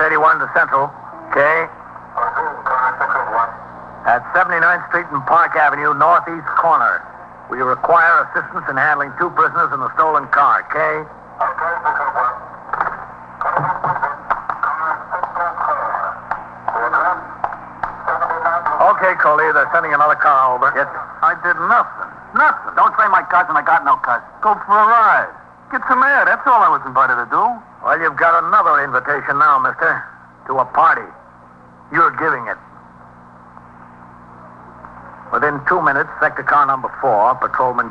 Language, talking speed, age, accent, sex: English, 115 wpm, 60-79, American, male